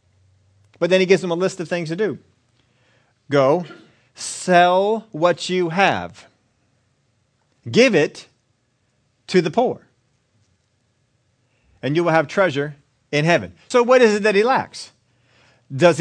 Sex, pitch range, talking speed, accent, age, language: male, 120-170 Hz, 135 wpm, American, 40-59, English